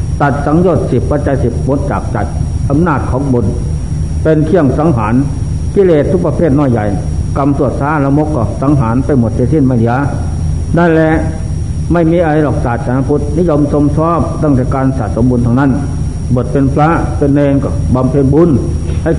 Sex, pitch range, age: male, 110-150 Hz, 60-79